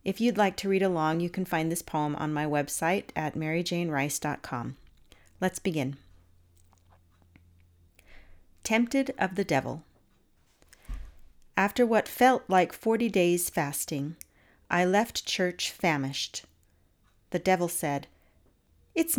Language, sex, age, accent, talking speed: English, female, 40-59, American, 115 wpm